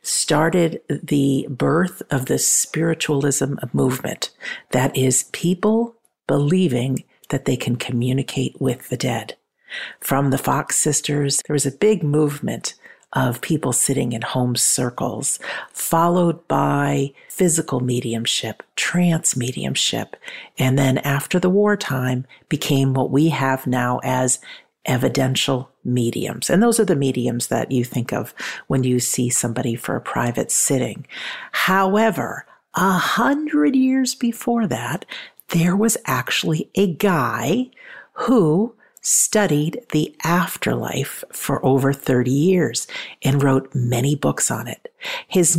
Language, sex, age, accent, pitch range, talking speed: English, female, 50-69, American, 130-195 Hz, 125 wpm